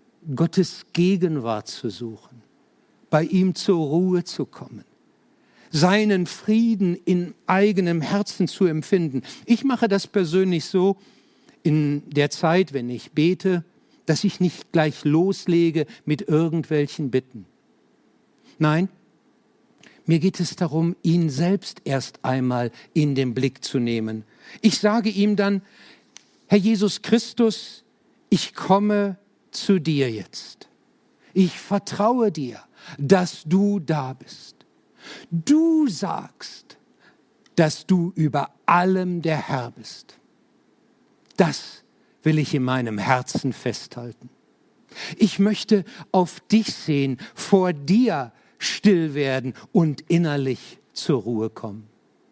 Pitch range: 145-200 Hz